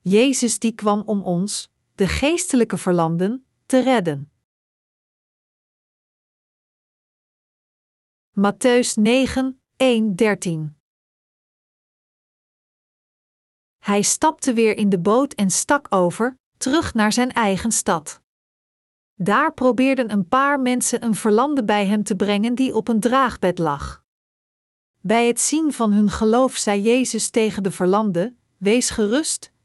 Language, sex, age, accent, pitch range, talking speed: Dutch, female, 40-59, Dutch, 195-250 Hz, 110 wpm